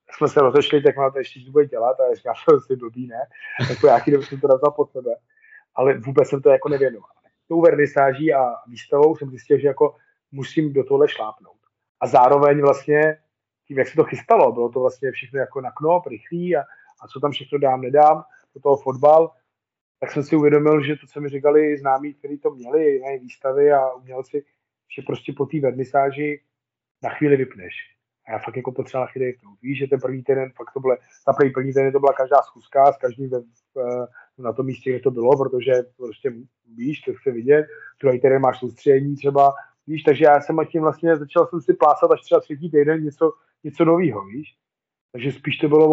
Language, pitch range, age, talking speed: Slovak, 130-160 Hz, 30-49, 200 wpm